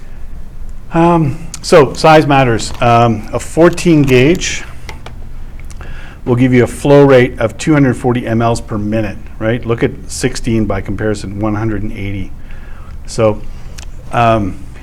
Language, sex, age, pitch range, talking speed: English, male, 50-69, 105-125 Hz, 115 wpm